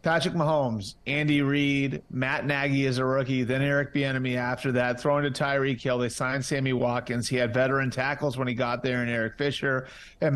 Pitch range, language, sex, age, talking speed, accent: 125-145 Hz, English, male, 40-59, 195 wpm, American